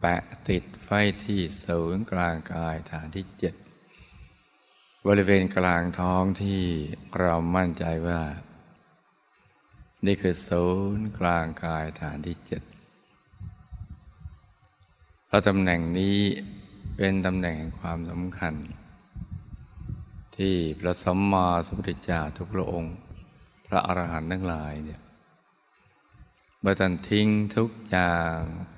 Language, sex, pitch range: Thai, male, 85-95 Hz